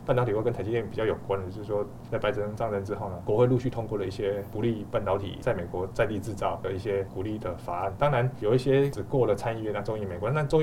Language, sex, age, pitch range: Chinese, male, 20-39, 100-125 Hz